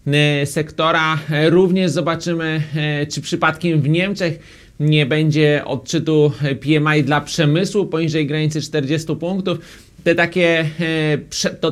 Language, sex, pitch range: Polish, male, 145-165 Hz